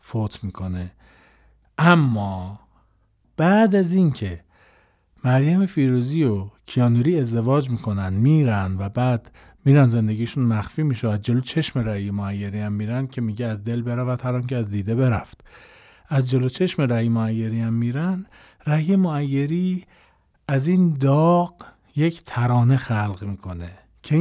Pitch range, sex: 110-150 Hz, male